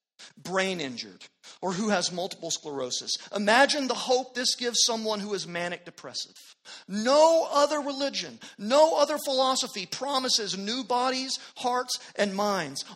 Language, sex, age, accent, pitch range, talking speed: English, male, 40-59, American, 195-270 Hz, 135 wpm